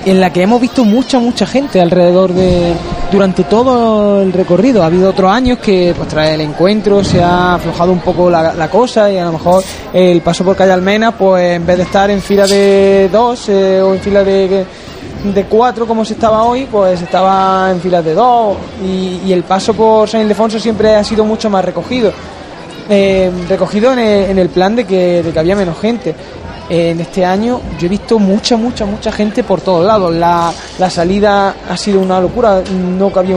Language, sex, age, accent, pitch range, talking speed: Spanish, male, 20-39, Spanish, 180-210 Hz, 205 wpm